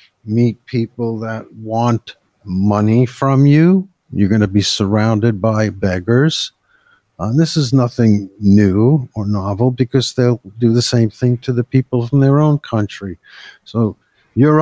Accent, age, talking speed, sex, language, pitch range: American, 50-69, 150 wpm, male, English, 110-135 Hz